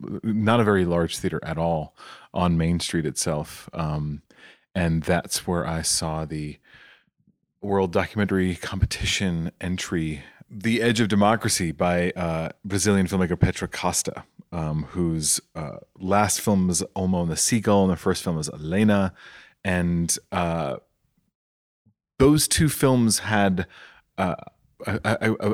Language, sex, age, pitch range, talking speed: English, male, 30-49, 85-100 Hz, 135 wpm